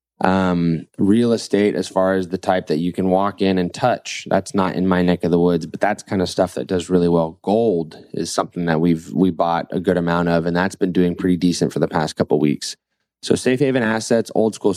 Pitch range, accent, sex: 85-95 Hz, American, male